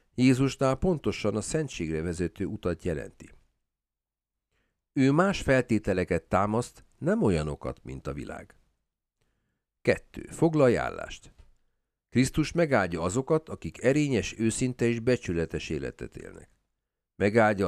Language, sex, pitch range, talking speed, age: Hungarian, male, 90-125 Hz, 100 wpm, 50-69